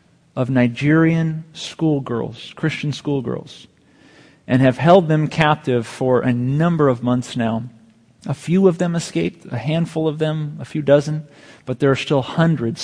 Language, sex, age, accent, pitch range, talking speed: English, male, 40-59, American, 130-180 Hz, 155 wpm